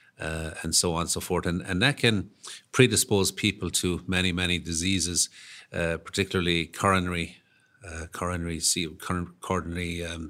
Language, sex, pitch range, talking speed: English, male, 85-95 Hz, 140 wpm